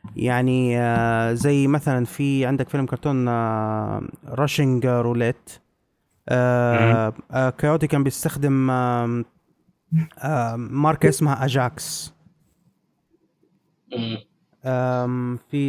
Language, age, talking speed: Arabic, 20-39, 60 wpm